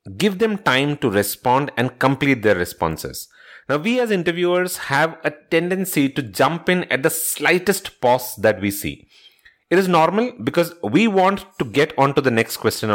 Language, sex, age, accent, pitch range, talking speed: English, male, 30-49, Indian, 130-180 Hz, 175 wpm